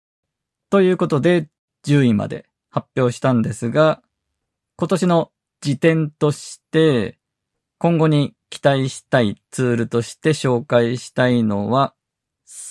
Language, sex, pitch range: Japanese, male, 115-160 Hz